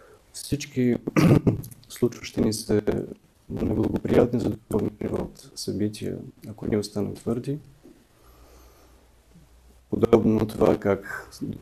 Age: 30-49